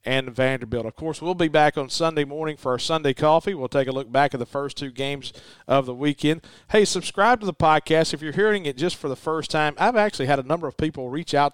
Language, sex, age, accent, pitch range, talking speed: English, male, 40-59, American, 125-155 Hz, 260 wpm